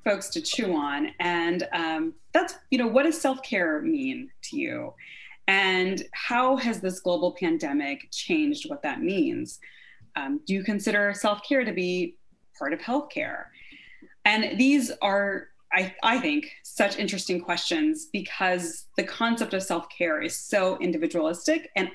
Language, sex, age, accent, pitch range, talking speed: English, female, 30-49, American, 180-300 Hz, 145 wpm